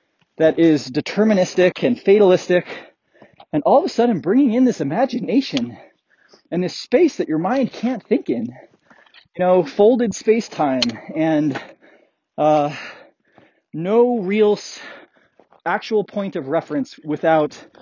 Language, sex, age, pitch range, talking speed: English, male, 30-49, 150-230 Hz, 120 wpm